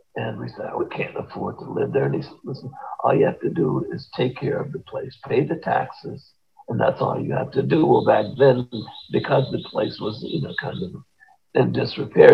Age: 50-69